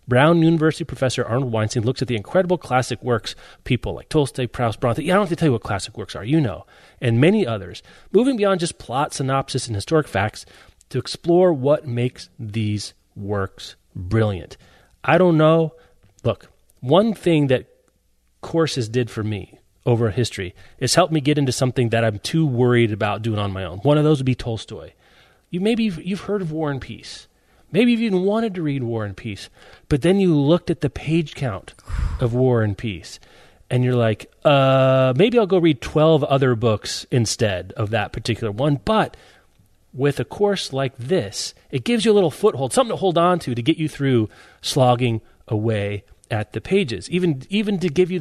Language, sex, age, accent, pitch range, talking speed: English, male, 30-49, American, 110-160 Hz, 195 wpm